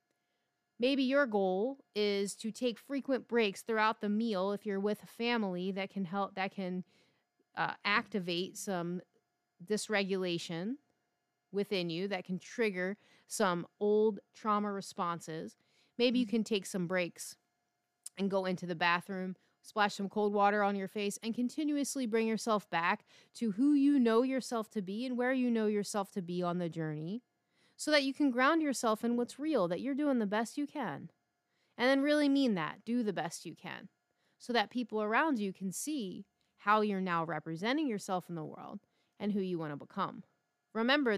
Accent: American